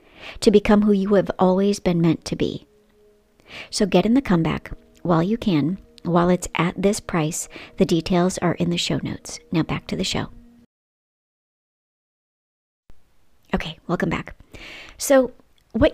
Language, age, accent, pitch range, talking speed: English, 40-59, American, 175-220 Hz, 150 wpm